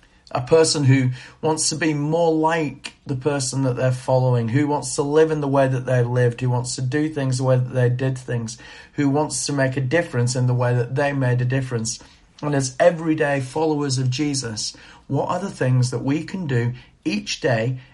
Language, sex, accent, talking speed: English, male, British, 215 wpm